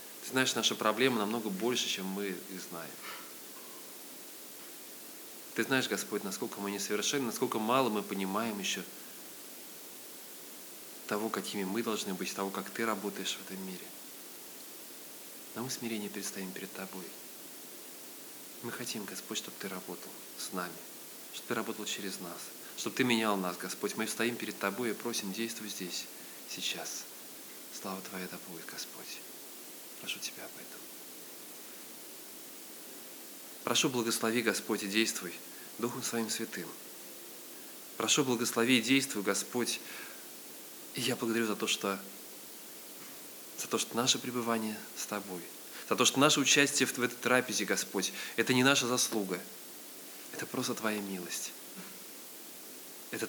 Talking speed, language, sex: 135 wpm, Russian, male